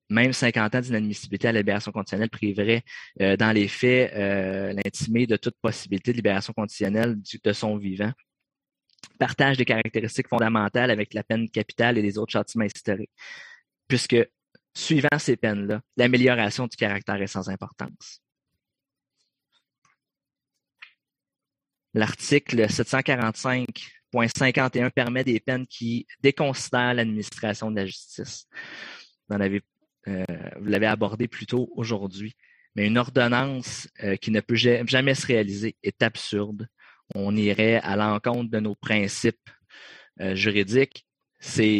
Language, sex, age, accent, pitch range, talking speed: English, male, 20-39, Canadian, 105-125 Hz, 130 wpm